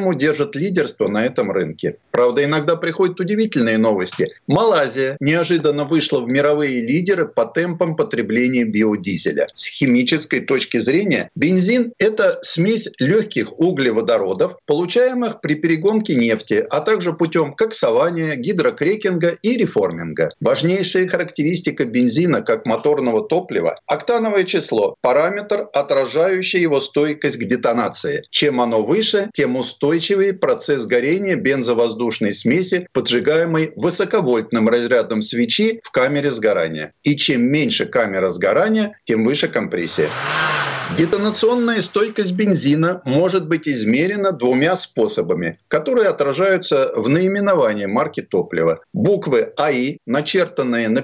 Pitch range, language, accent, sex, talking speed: 145-210 Hz, Russian, native, male, 115 wpm